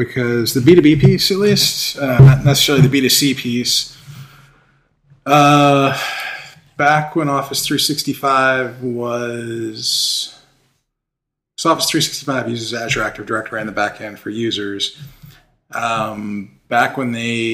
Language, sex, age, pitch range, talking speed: English, male, 20-39, 110-140 Hz, 120 wpm